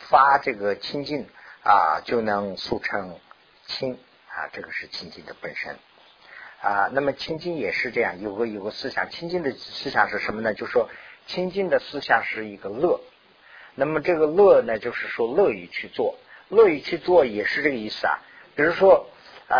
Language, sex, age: Chinese, male, 50-69